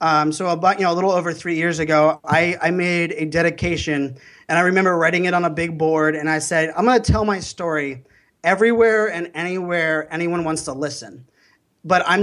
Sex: male